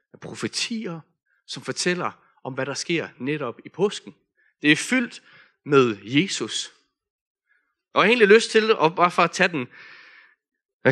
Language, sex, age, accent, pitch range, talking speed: Danish, male, 30-49, native, 150-215 Hz, 160 wpm